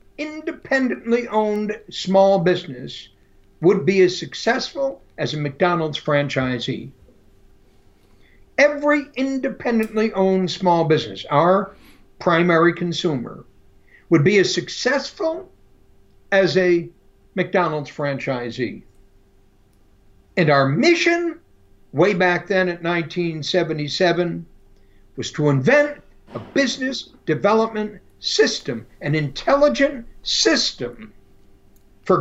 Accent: American